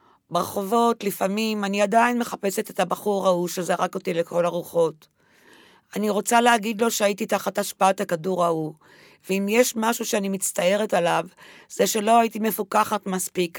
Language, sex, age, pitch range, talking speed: Hebrew, female, 40-59, 190-220 Hz, 140 wpm